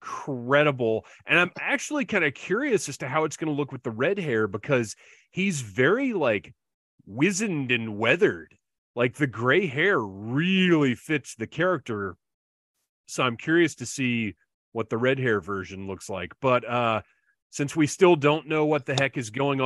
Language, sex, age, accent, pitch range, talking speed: English, male, 30-49, American, 110-150 Hz, 175 wpm